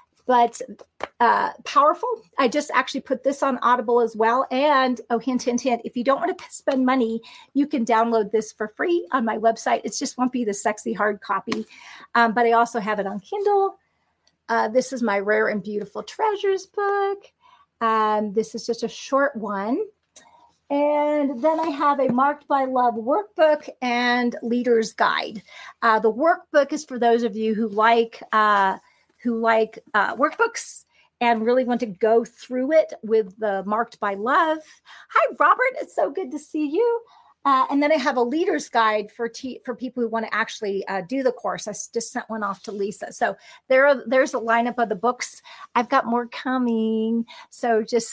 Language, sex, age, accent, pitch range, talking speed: English, female, 40-59, American, 225-285 Hz, 190 wpm